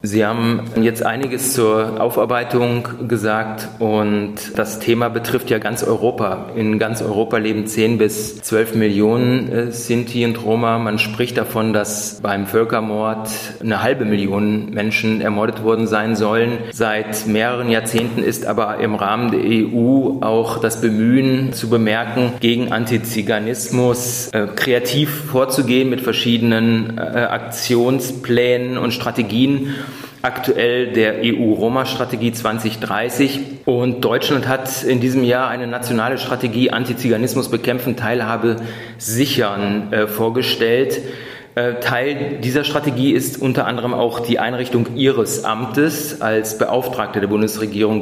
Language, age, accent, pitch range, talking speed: German, 30-49, German, 110-125 Hz, 120 wpm